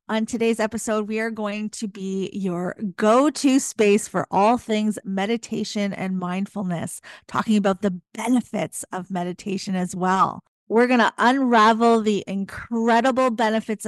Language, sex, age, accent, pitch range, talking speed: English, female, 30-49, American, 195-240 Hz, 140 wpm